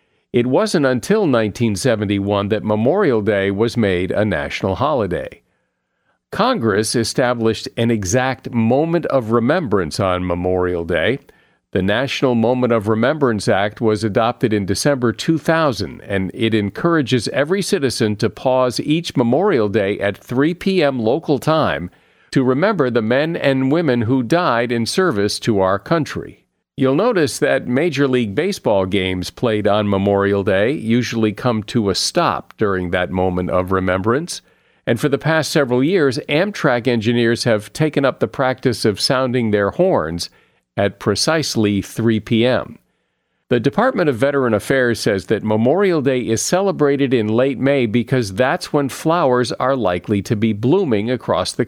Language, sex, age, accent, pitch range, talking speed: English, male, 50-69, American, 105-140 Hz, 150 wpm